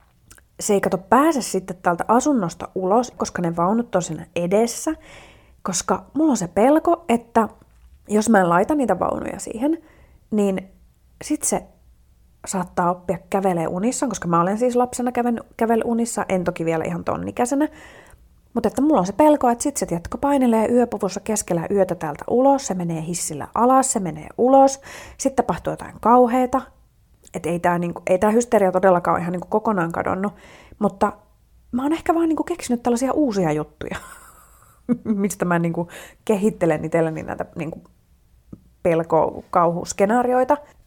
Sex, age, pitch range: female, 30-49, 175-245 Hz